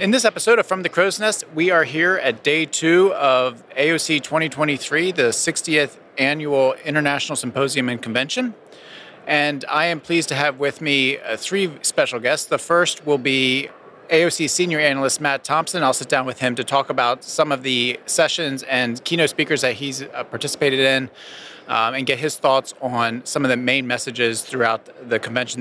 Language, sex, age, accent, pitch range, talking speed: English, male, 30-49, American, 130-160 Hz, 180 wpm